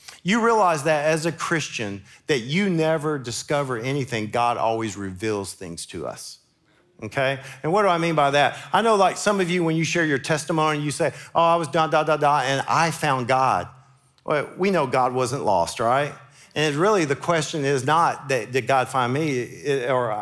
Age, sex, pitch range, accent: 50-69, male, 135-185 Hz, American